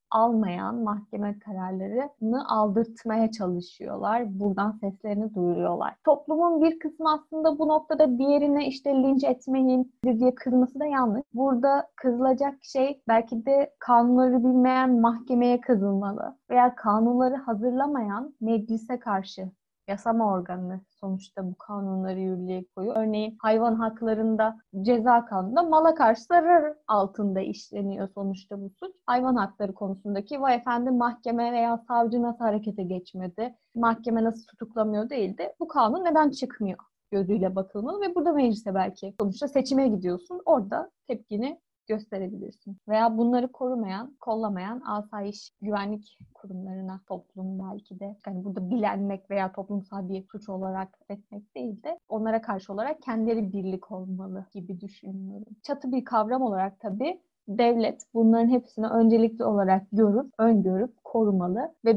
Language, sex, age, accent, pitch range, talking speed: Turkish, female, 20-39, native, 200-255 Hz, 125 wpm